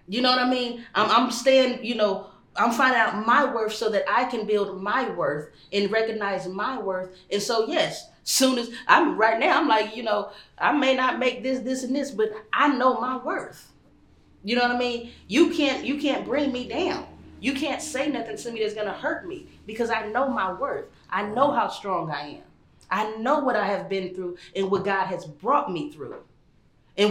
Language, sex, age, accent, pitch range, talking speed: English, female, 30-49, American, 180-240 Hz, 220 wpm